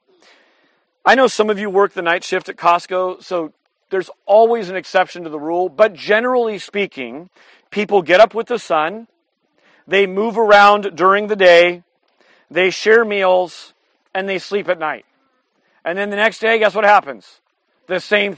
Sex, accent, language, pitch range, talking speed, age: male, American, English, 170-215 Hz, 170 wpm, 40-59